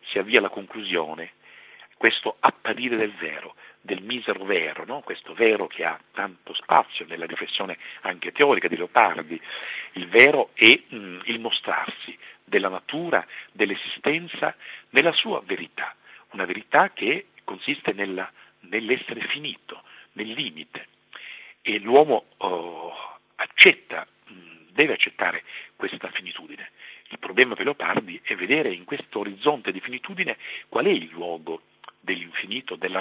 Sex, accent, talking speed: male, native, 120 wpm